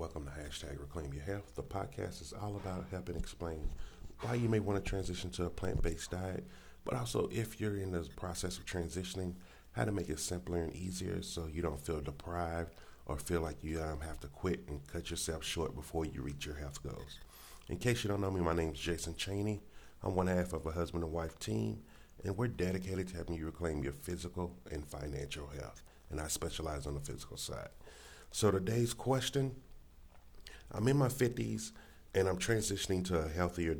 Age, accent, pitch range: 40-59, American, 80-100 Hz